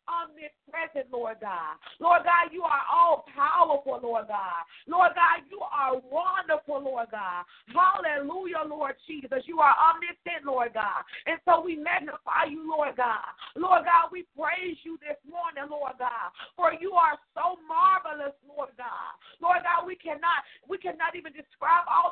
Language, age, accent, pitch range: English, 40-59, American, 280-340 Hz